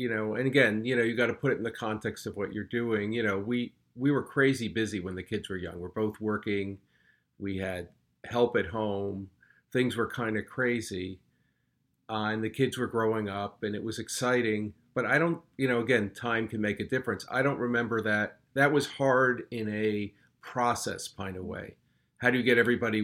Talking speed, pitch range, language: 215 wpm, 105-120 Hz, English